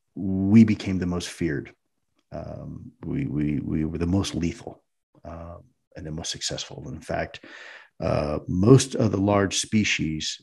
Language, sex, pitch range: English, male, 85-110 Hz